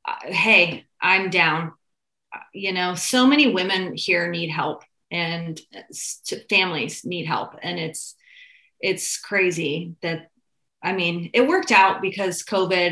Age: 30-49